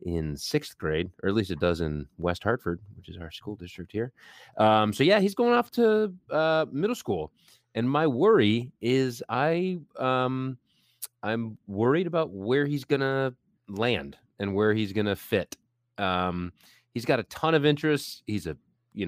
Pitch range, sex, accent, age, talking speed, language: 95-130 Hz, male, American, 30-49, 180 wpm, English